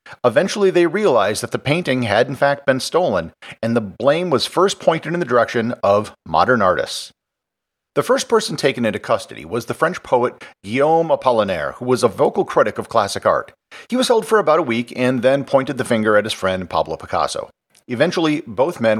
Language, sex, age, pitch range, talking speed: English, male, 40-59, 115-165 Hz, 200 wpm